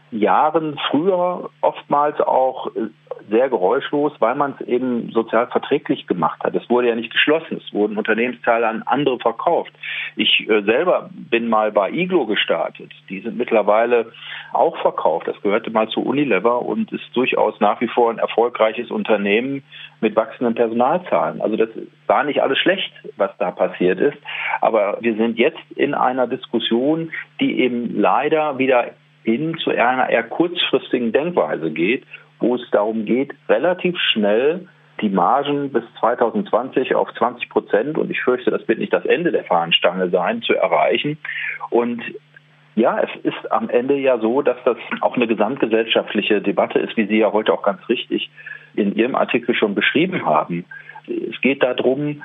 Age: 40-59